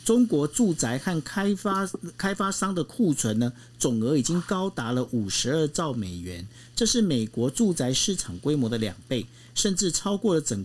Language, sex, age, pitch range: Chinese, male, 50-69, 120-190 Hz